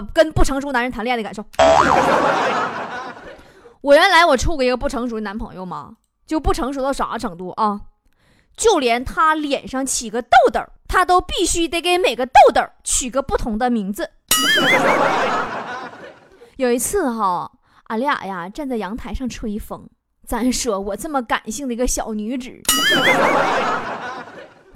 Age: 20-39